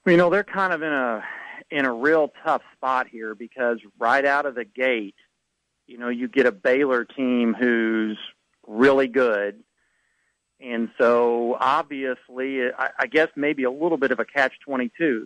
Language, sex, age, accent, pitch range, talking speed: English, male, 40-59, American, 120-145 Hz, 170 wpm